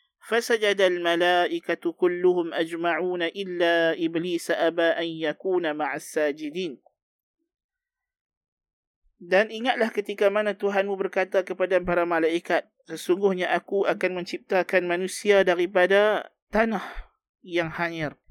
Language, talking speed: Malay, 95 wpm